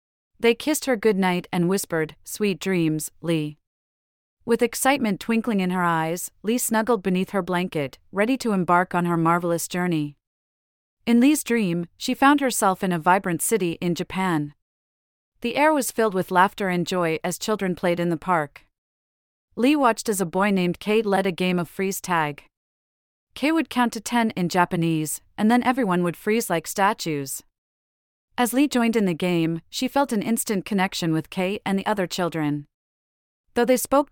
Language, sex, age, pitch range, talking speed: English, female, 40-59, 165-220 Hz, 175 wpm